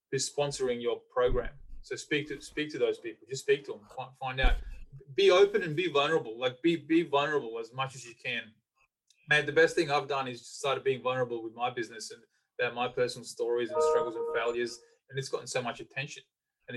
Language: English